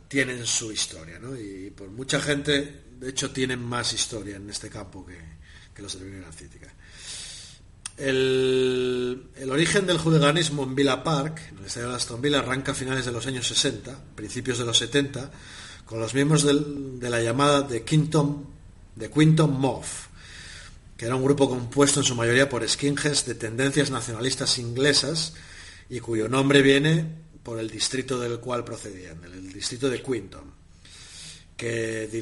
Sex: male